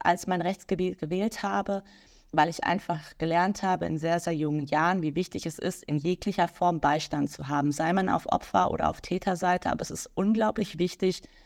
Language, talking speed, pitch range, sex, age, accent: German, 195 wpm, 165-190 Hz, female, 20-39, German